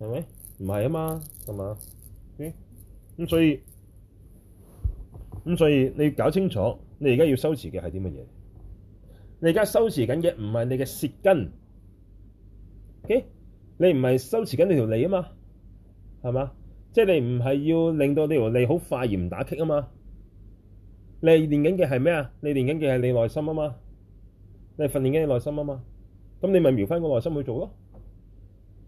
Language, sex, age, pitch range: Chinese, male, 30-49, 95-145 Hz